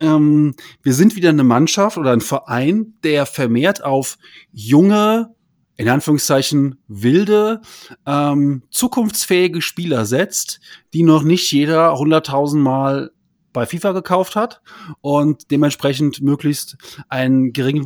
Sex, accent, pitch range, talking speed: male, German, 130-165 Hz, 120 wpm